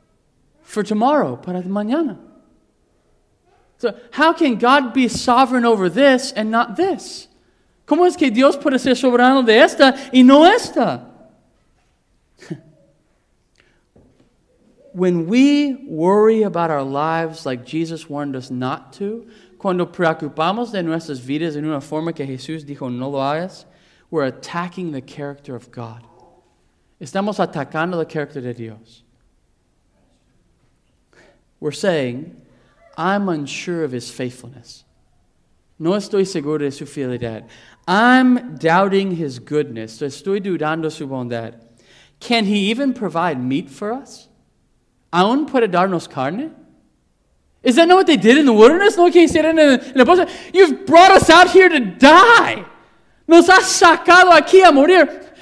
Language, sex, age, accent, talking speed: English, male, 40-59, American, 130 wpm